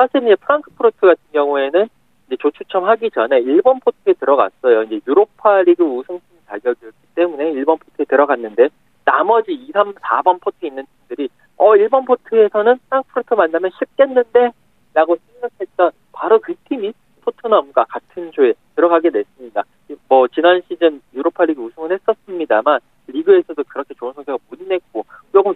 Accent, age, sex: native, 40-59, male